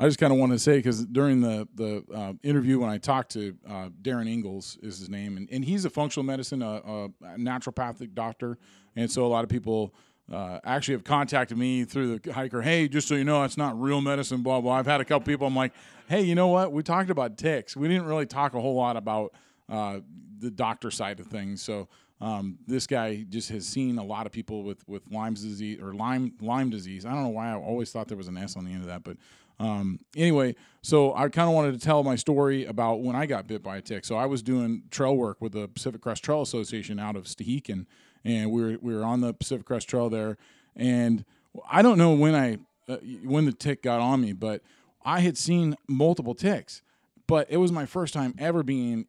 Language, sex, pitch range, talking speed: English, male, 110-140 Hz, 240 wpm